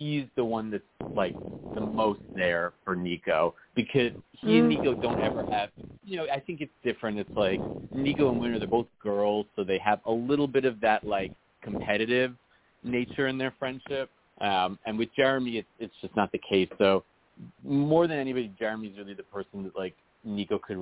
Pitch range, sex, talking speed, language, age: 100-125 Hz, male, 195 wpm, English, 30-49